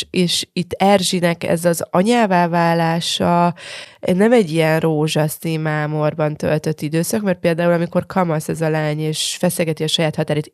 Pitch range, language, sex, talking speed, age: 160-190 Hz, Hungarian, female, 135 wpm, 20-39